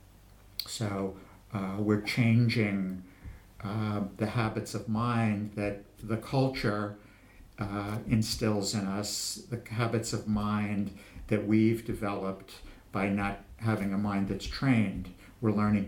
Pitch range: 100-110 Hz